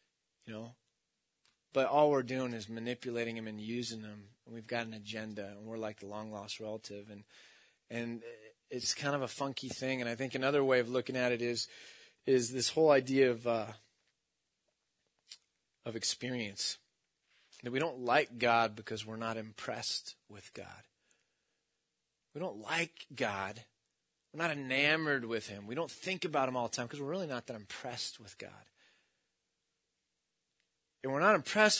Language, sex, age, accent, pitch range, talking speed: English, male, 30-49, American, 115-160 Hz, 170 wpm